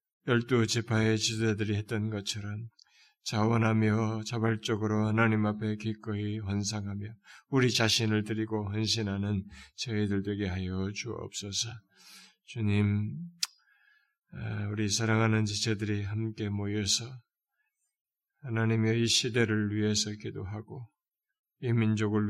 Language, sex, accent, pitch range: Korean, male, native, 105-115 Hz